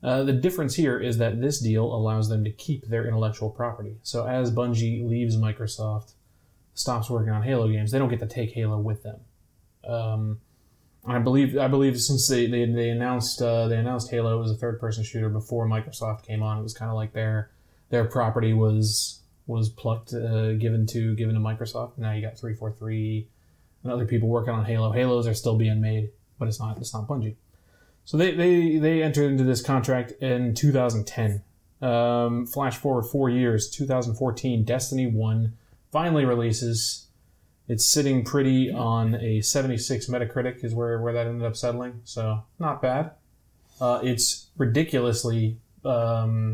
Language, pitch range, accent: English, 110-125 Hz, American